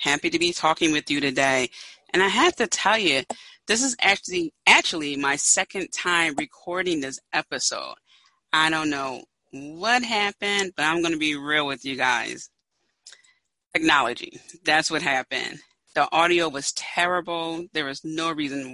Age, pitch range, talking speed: 30-49, 140-175 Hz, 155 wpm